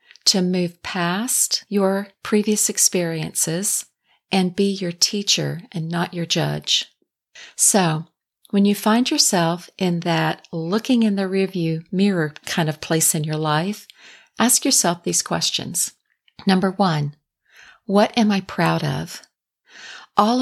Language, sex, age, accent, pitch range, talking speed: English, female, 50-69, American, 170-205 Hz, 130 wpm